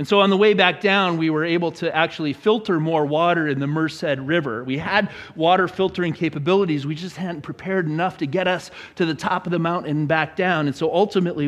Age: 40-59